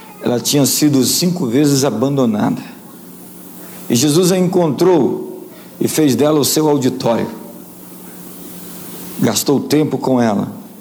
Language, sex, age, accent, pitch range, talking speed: Portuguese, male, 60-79, Brazilian, 145-185 Hz, 110 wpm